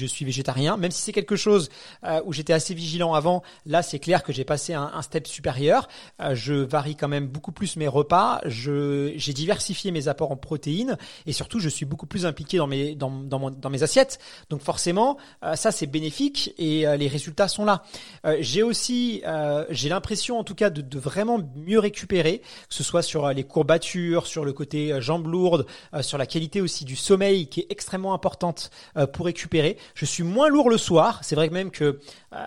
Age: 30-49